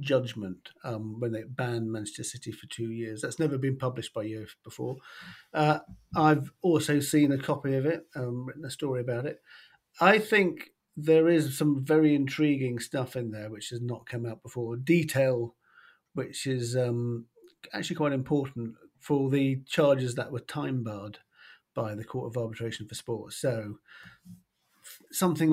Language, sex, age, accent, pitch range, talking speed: English, male, 50-69, British, 120-150 Hz, 165 wpm